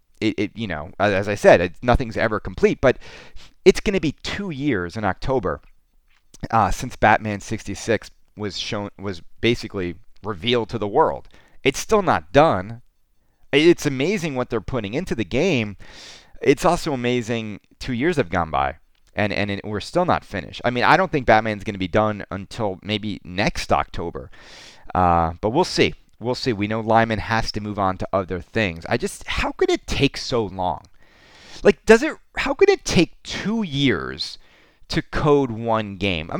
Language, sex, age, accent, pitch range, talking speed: English, male, 30-49, American, 100-140 Hz, 180 wpm